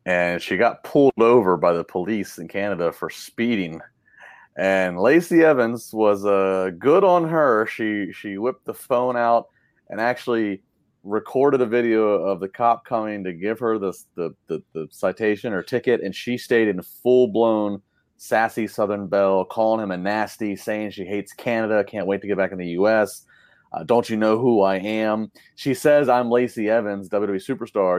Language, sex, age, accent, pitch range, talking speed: English, male, 30-49, American, 95-120 Hz, 180 wpm